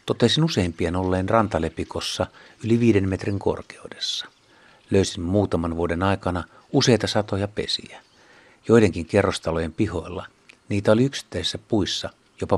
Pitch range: 90-110 Hz